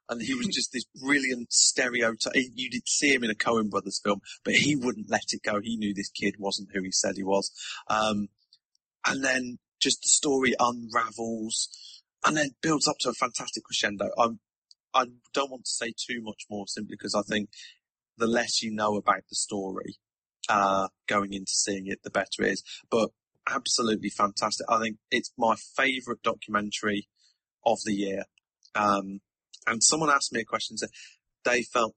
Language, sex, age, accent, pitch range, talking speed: English, male, 30-49, British, 100-120 Hz, 185 wpm